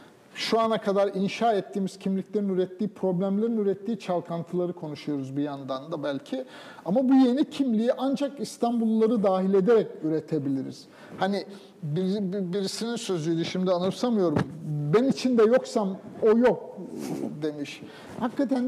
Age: 50-69